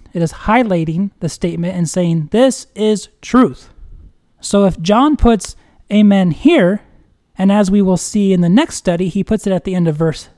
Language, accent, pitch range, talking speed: English, American, 180-245 Hz, 190 wpm